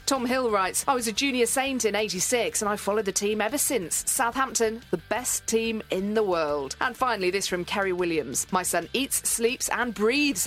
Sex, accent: female, British